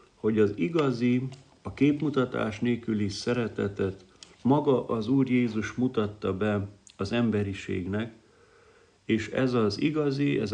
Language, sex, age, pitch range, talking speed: Hungarian, male, 50-69, 100-125 Hz, 115 wpm